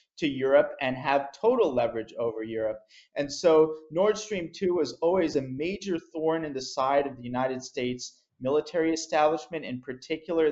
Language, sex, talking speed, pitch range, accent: English, male, 165 wpm, 130-160 Hz, American